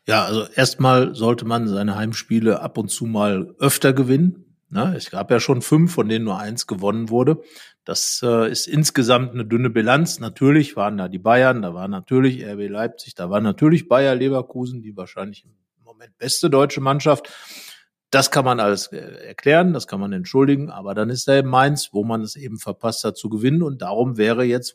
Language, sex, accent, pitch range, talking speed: German, male, German, 115-140 Hz, 190 wpm